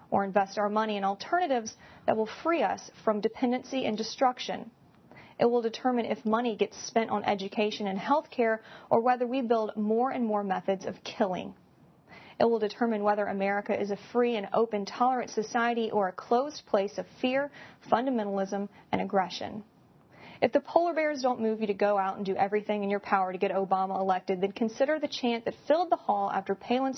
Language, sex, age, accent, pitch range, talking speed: English, female, 30-49, American, 200-245 Hz, 195 wpm